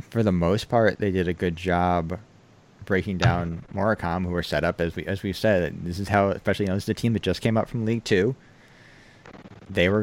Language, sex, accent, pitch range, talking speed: English, male, American, 95-115 Hz, 240 wpm